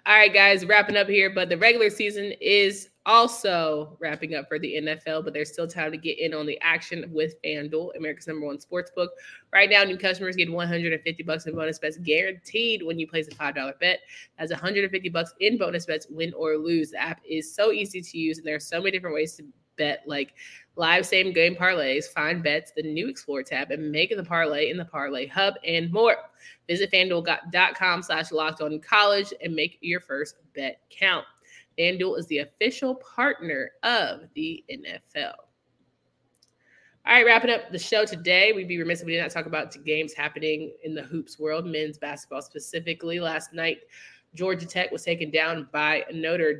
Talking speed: 190 wpm